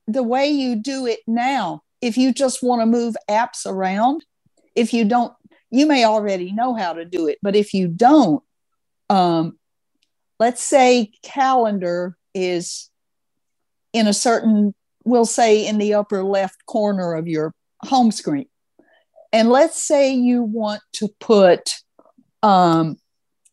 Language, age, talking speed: English, 60-79, 145 wpm